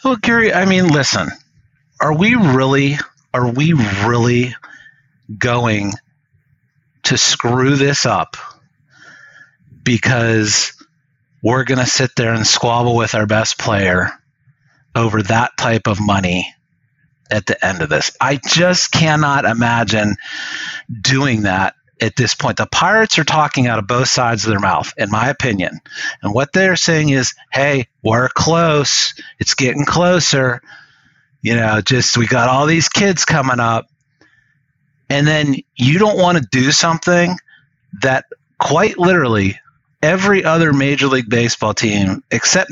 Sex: male